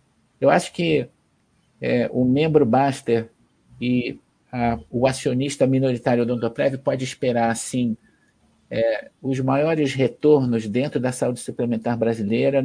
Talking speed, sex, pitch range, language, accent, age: 120 wpm, male, 120-145 Hz, Portuguese, Brazilian, 50-69